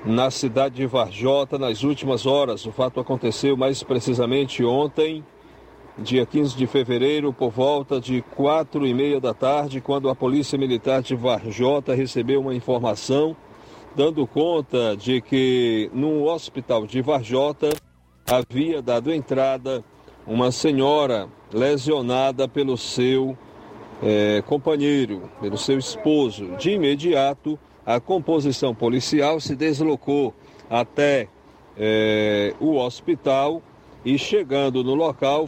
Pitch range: 125-150 Hz